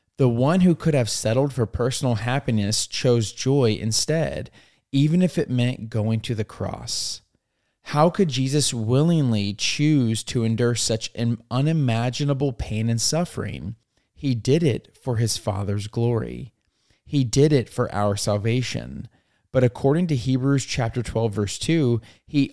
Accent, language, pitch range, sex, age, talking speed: American, English, 110-140 Hz, male, 30-49, 145 wpm